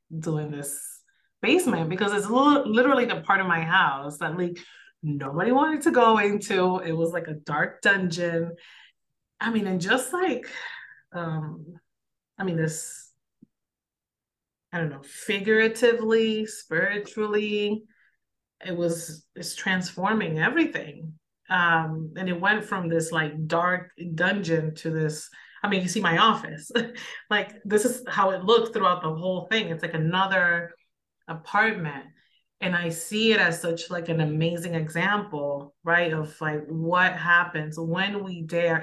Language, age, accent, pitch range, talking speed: English, 30-49, American, 160-200 Hz, 140 wpm